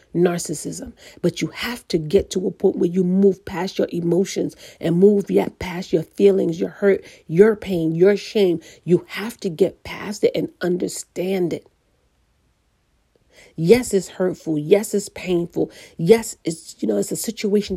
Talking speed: 165 wpm